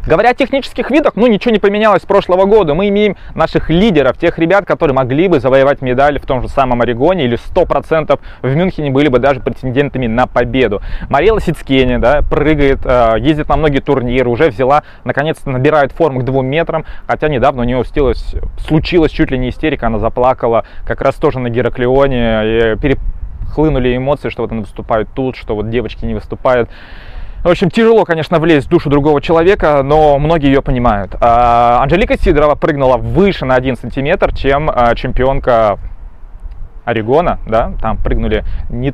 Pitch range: 120-155 Hz